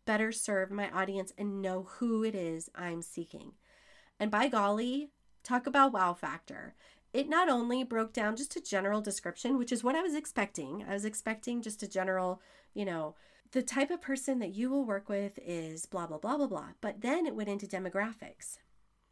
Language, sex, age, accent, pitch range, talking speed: English, female, 30-49, American, 175-225 Hz, 195 wpm